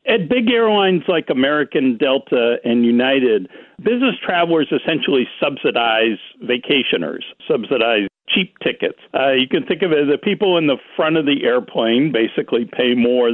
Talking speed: 155 wpm